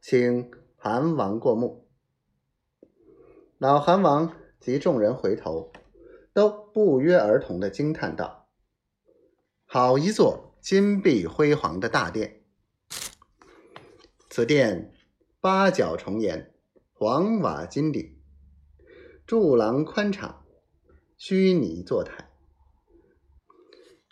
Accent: native